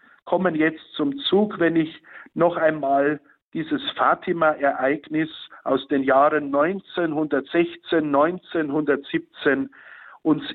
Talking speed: 90 wpm